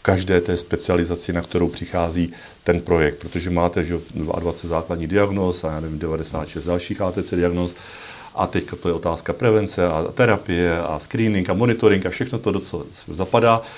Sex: male